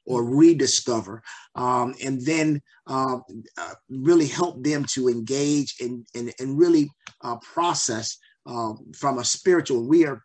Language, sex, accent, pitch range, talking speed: English, male, American, 120-145 Hz, 140 wpm